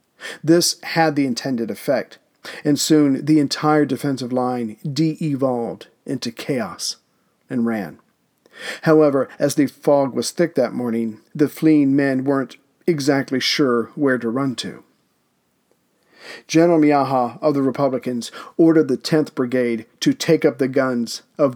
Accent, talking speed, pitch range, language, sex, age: American, 135 wpm, 125-150 Hz, English, male, 40-59